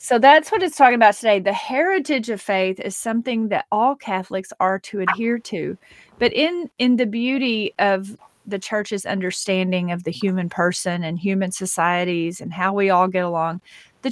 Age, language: 40-59, English